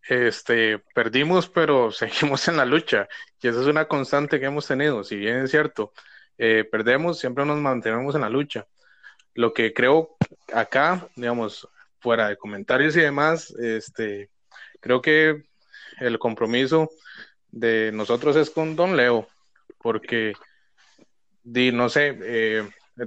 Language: Spanish